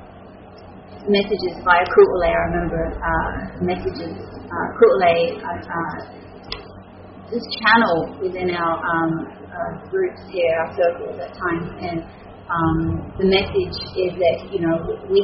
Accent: Australian